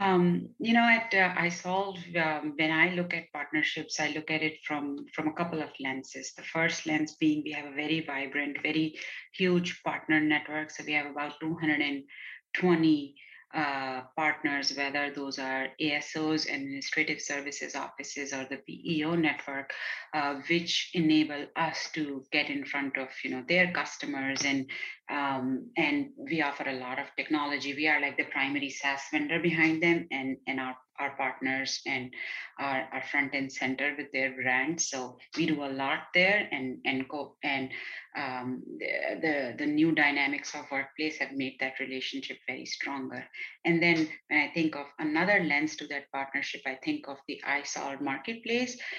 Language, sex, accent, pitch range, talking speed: English, female, Indian, 135-160 Hz, 170 wpm